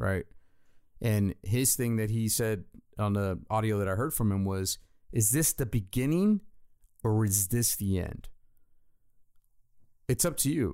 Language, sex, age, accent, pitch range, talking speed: English, male, 30-49, American, 105-125 Hz, 160 wpm